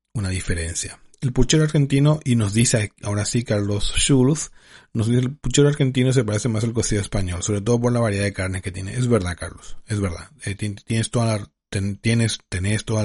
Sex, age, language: male, 40-59, Spanish